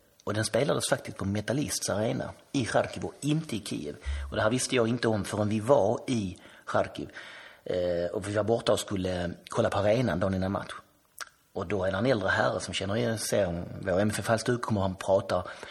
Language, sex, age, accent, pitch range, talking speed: Swedish, male, 30-49, native, 95-115 Hz, 210 wpm